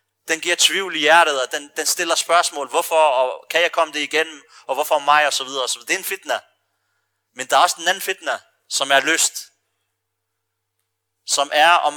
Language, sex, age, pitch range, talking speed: Danish, male, 30-49, 130-170 Hz, 205 wpm